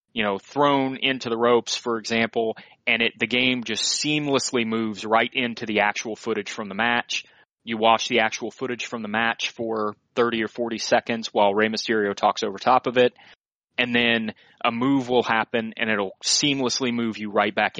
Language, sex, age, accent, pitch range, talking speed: English, male, 30-49, American, 110-125 Hz, 190 wpm